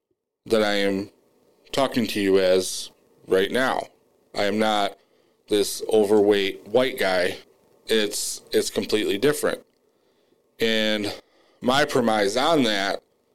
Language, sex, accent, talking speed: English, male, American, 110 wpm